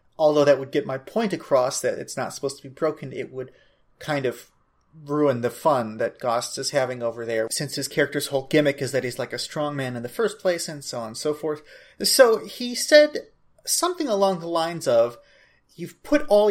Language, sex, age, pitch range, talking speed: English, male, 30-49, 135-170 Hz, 220 wpm